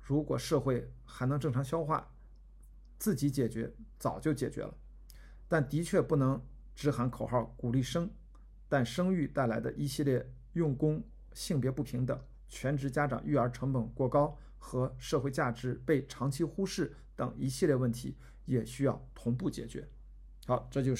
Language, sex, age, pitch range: Chinese, male, 50-69, 115-140 Hz